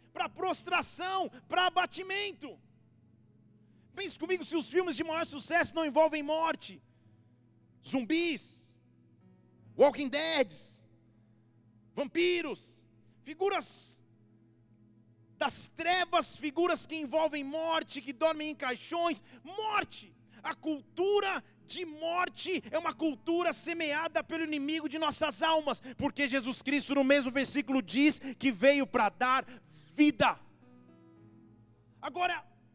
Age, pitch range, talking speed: 40-59, 215-330 Hz, 105 wpm